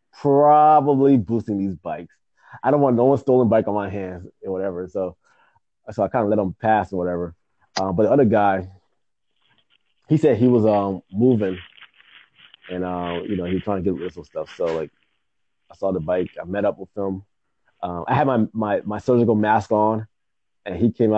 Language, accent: English, American